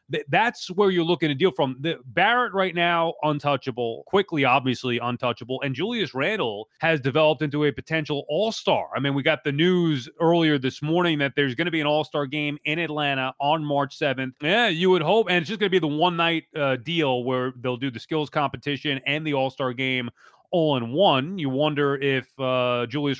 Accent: American